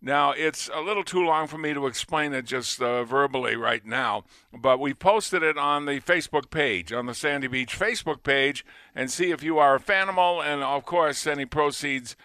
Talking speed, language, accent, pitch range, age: 205 wpm, English, American, 130-170 Hz, 50-69